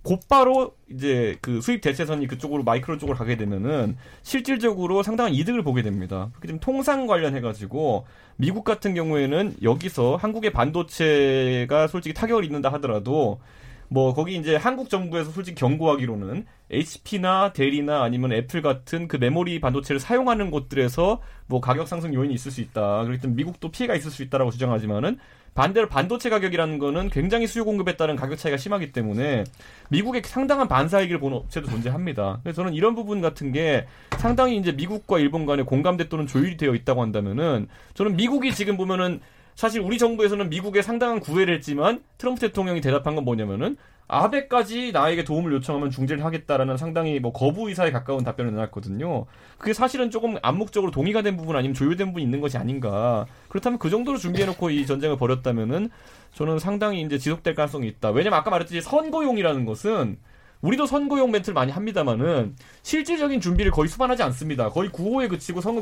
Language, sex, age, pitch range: Korean, male, 30-49, 130-205 Hz